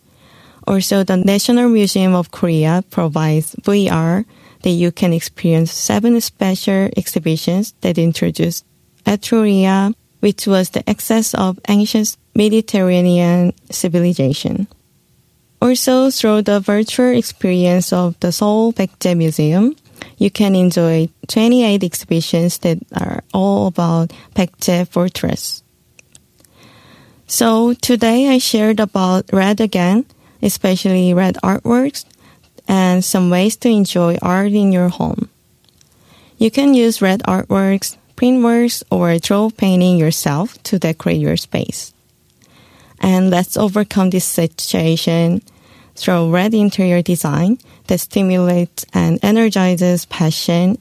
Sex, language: female, Korean